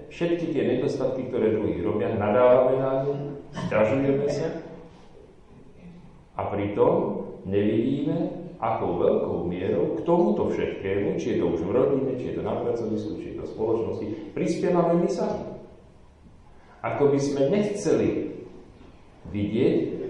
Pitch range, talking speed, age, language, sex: 100-155 Hz, 130 wpm, 40-59, Slovak, male